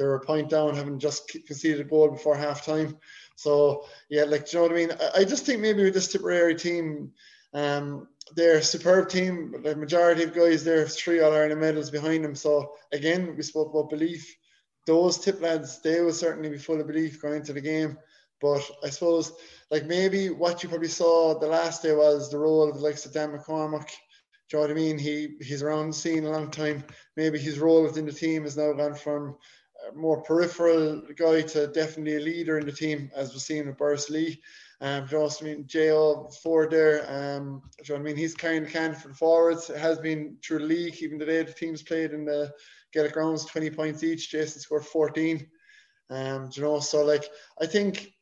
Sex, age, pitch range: male, 20-39, 150-165 Hz